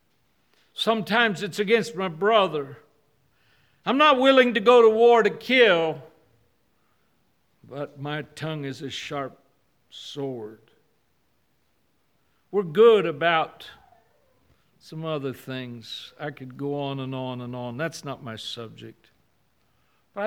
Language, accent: English, American